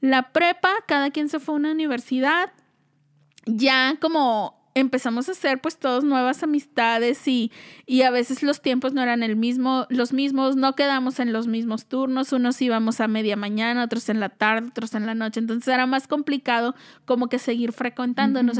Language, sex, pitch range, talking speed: Spanish, female, 240-290 Hz, 185 wpm